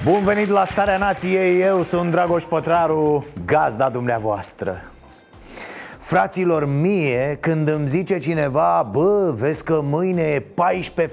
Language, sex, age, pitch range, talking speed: Romanian, male, 30-49, 130-175 Hz, 125 wpm